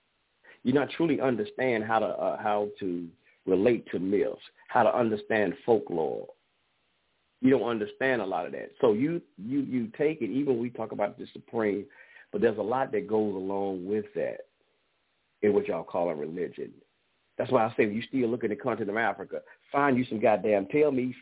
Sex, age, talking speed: male, 50-69, 200 wpm